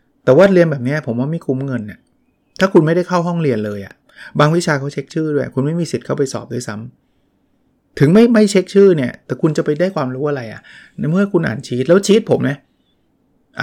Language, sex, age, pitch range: Thai, male, 30-49, 120-160 Hz